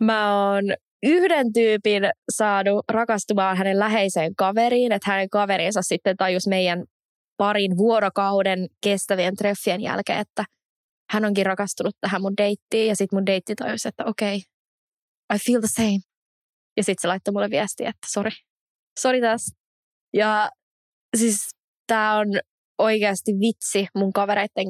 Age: 20-39